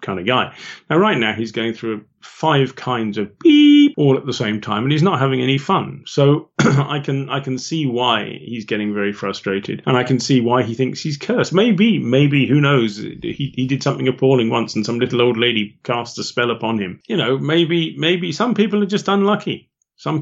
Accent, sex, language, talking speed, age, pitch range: British, male, English, 220 wpm, 40-59, 110-145 Hz